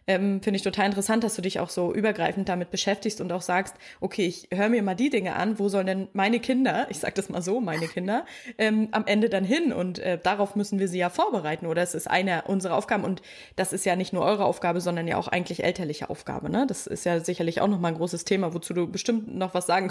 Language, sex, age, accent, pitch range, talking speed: German, female, 20-39, German, 190-235 Hz, 255 wpm